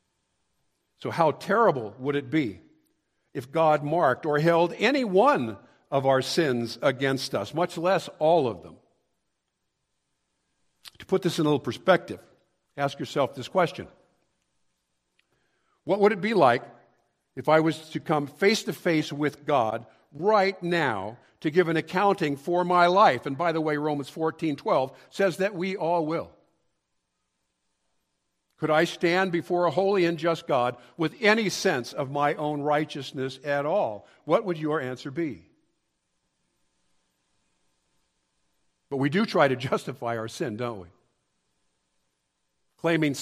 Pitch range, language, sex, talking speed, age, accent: 115-170 Hz, English, male, 145 wpm, 50-69, American